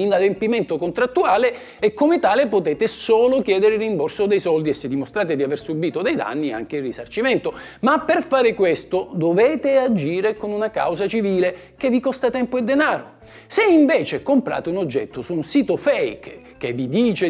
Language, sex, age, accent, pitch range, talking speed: Italian, male, 50-69, native, 170-245 Hz, 175 wpm